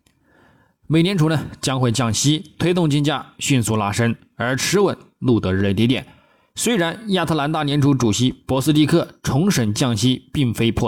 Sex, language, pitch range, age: male, Chinese, 110-150 Hz, 20-39